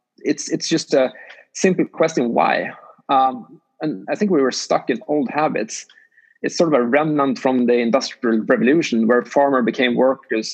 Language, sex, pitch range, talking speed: English, male, 135-185 Hz, 170 wpm